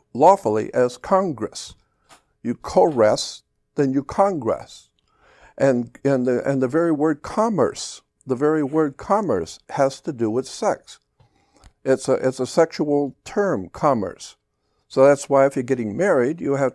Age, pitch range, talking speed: 60-79, 130-155 Hz, 145 wpm